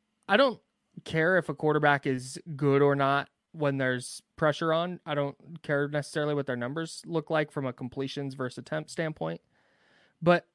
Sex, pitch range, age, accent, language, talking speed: male, 140-180 Hz, 20-39, American, English, 170 wpm